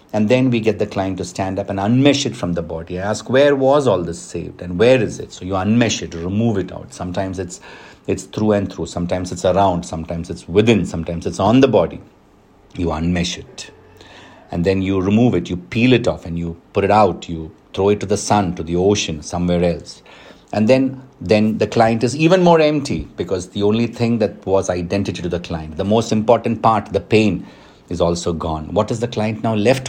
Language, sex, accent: English, male, Indian